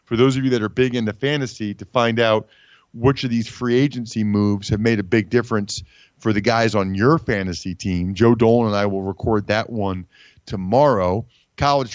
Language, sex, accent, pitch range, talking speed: English, male, American, 105-135 Hz, 200 wpm